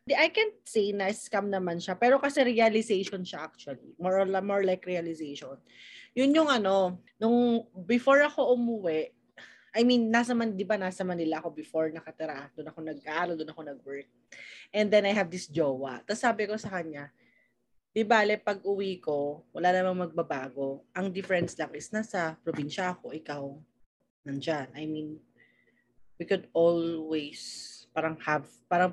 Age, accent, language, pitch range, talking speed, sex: 20-39, native, Filipino, 160-230 Hz, 155 wpm, female